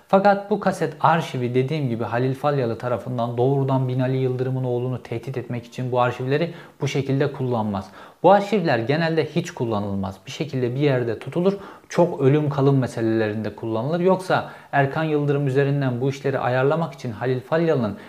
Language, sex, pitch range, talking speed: Turkish, male, 120-155 Hz, 155 wpm